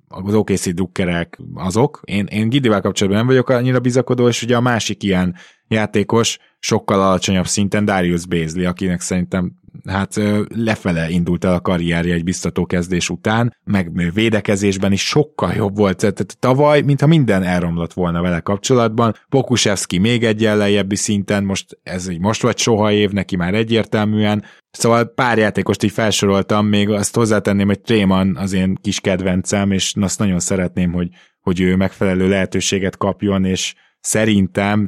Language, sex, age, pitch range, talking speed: Hungarian, male, 20-39, 95-110 Hz, 155 wpm